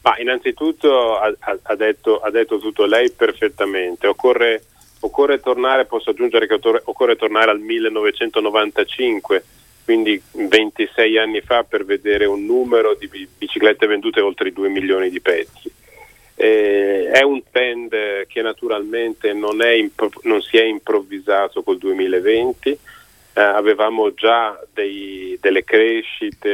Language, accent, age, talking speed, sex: Italian, native, 40-59, 130 wpm, male